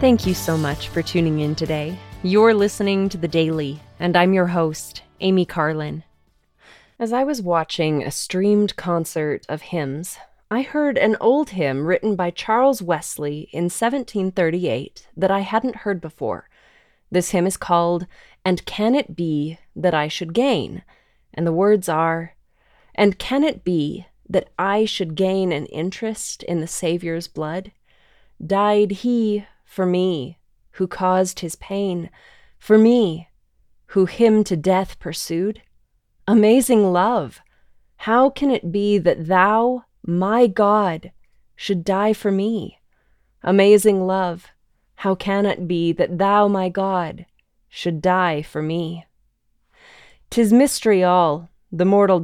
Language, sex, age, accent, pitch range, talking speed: English, female, 30-49, American, 170-210 Hz, 140 wpm